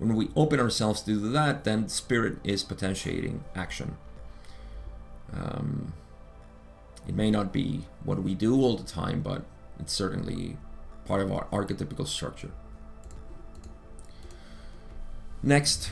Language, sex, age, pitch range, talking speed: English, male, 30-49, 95-125 Hz, 115 wpm